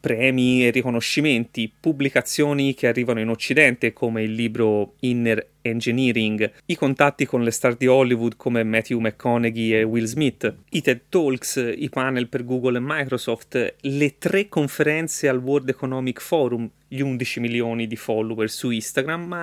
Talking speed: 155 wpm